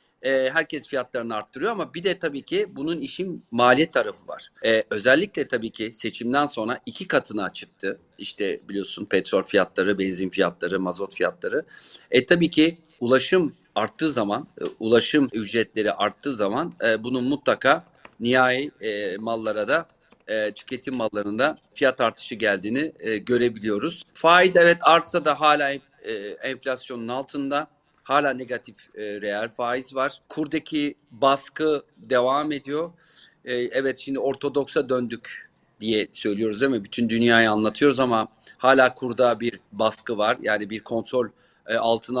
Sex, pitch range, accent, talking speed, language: male, 115-150 Hz, native, 130 wpm, Turkish